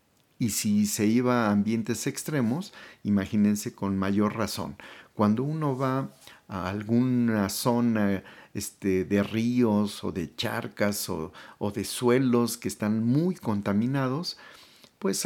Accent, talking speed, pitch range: Mexican, 120 wpm, 100-125 Hz